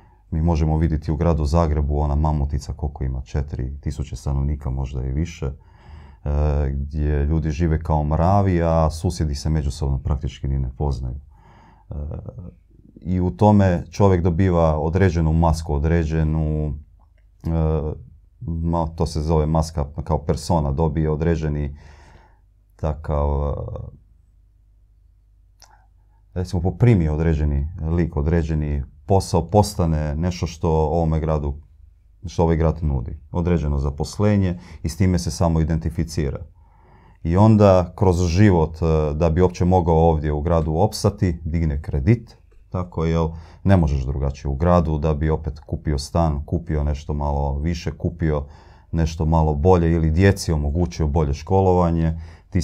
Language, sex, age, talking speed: Croatian, male, 30-49, 130 wpm